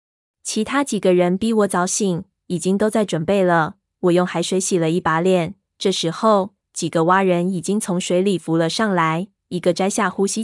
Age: 20-39